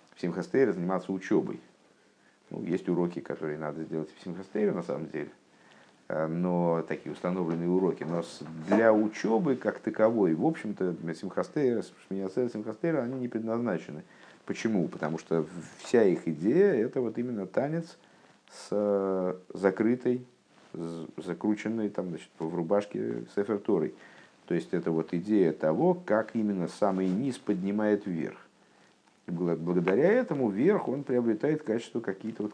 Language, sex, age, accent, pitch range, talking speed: Russian, male, 50-69, native, 90-115 Hz, 130 wpm